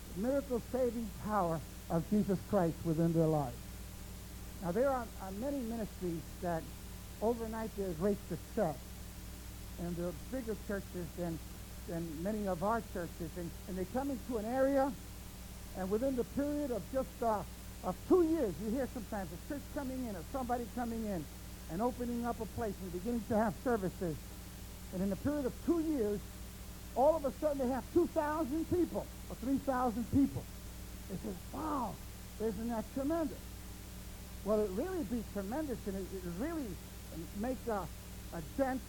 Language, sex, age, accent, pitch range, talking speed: English, male, 60-79, American, 185-265 Hz, 165 wpm